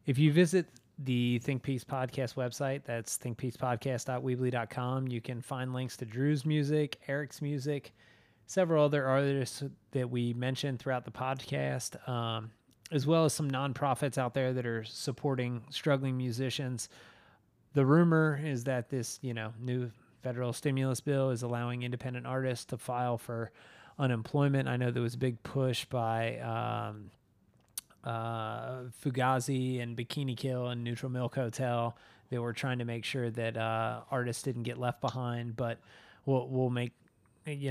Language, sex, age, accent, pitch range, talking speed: English, male, 20-39, American, 120-135 Hz, 155 wpm